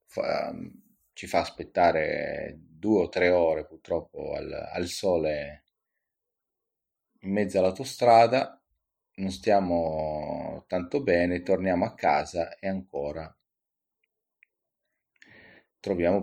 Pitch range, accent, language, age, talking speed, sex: 85-105 Hz, native, Italian, 30-49, 90 wpm, male